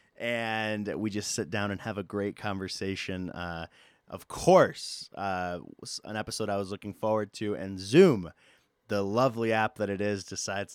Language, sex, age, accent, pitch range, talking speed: English, male, 30-49, American, 95-110 Hz, 175 wpm